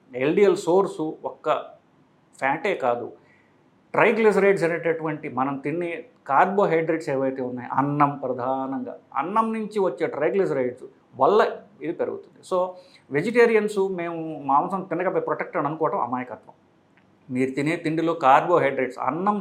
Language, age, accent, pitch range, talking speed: English, 50-69, Indian, 140-190 Hz, 110 wpm